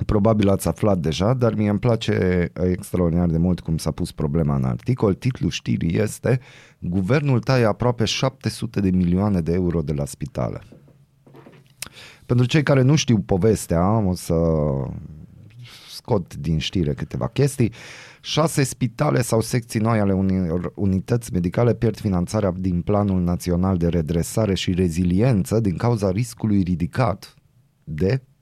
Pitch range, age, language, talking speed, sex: 90-120 Hz, 30-49, Romanian, 140 wpm, male